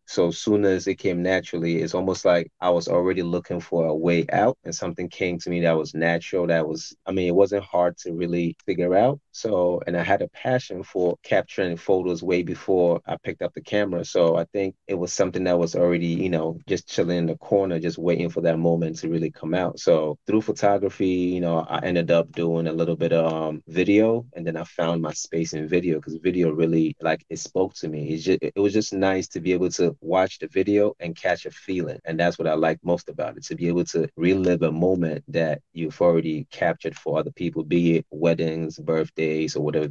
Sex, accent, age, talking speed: male, American, 30-49, 230 wpm